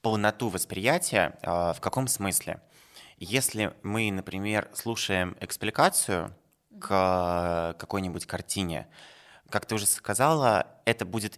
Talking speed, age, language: 100 wpm, 20-39, Russian